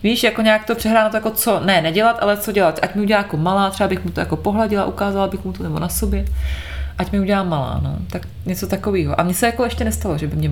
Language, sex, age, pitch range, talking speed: Czech, female, 20-39, 165-200 Hz, 270 wpm